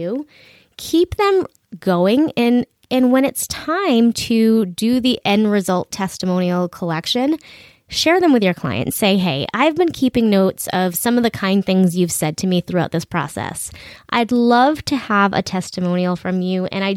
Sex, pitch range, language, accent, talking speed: female, 180-240 Hz, English, American, 175 wpm